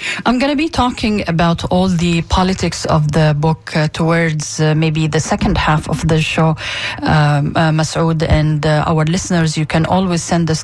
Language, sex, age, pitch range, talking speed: English, female, 30-49, 150-180 Hz, 190 wpm